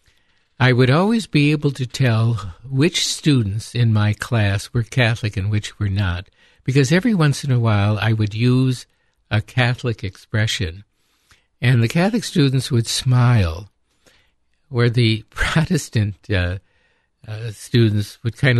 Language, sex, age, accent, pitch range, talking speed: English, male, 60-79, American, 105-135 Hz, 140 wpm